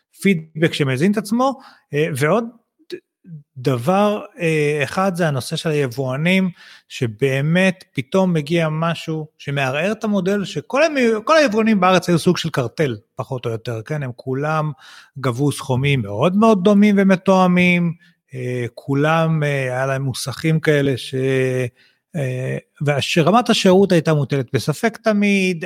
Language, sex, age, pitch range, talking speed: Hebrew, male, 30-49, 135-190 Hz, 120 wpm